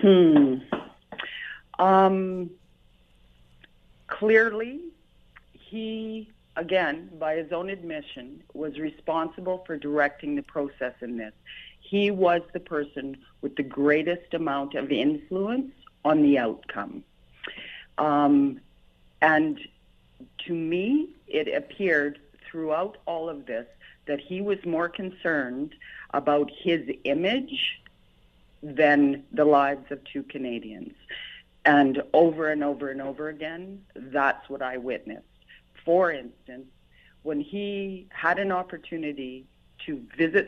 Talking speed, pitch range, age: 110 wpm, 140-185 Hz, 50-69